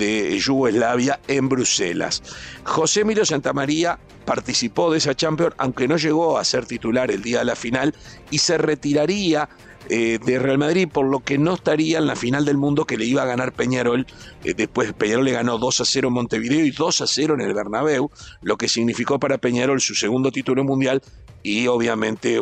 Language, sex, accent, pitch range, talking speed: Spanish, male, Argentinian, 120-155 Hz, 195 wpm